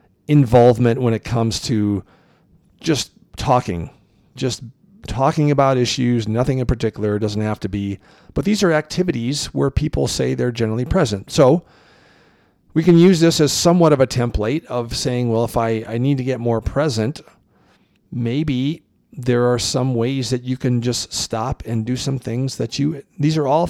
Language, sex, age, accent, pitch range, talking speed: English, male, 40-59, American, 110-145 Hz, 170 wpm